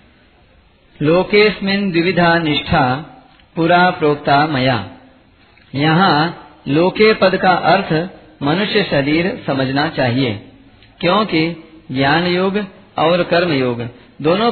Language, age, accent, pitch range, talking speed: Hindi, 40-59, native, 140-180 Hz, 85 wpm